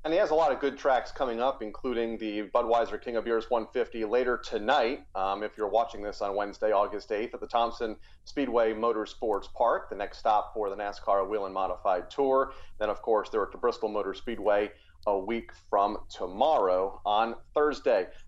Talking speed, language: 195 wpm, English